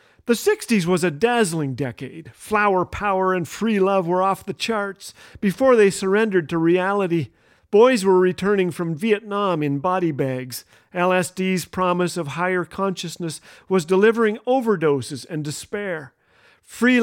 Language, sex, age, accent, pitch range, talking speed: English, male, 40-59, American, 160-205 Hz, 135 wpm